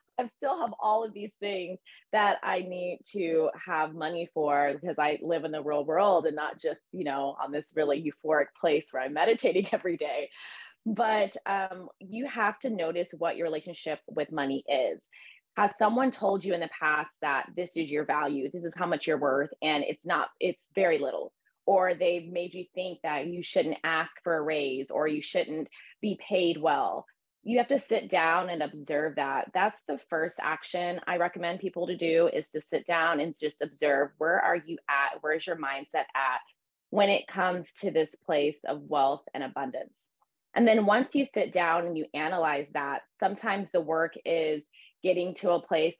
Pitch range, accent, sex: 155-190 Hz, American, female